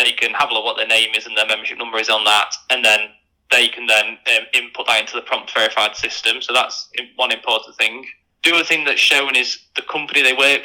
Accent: British